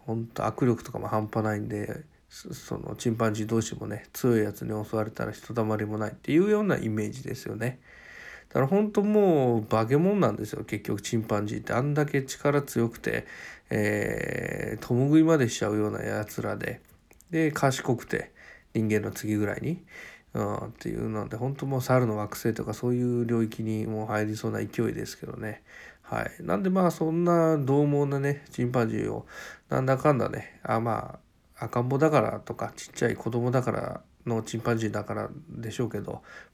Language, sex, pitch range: Japanese, male, 110-135 Hz